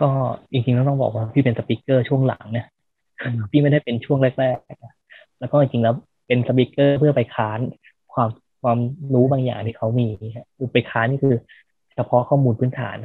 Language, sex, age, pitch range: Thai, male, 20-39, 115-135 Hz